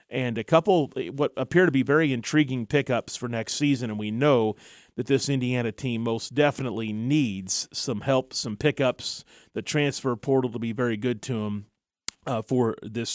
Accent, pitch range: American, 120-145 Hz